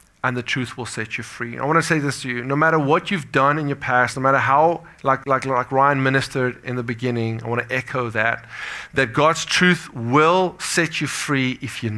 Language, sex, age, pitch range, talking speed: English, male, 30-49, 120-145 Hz, 225 wpm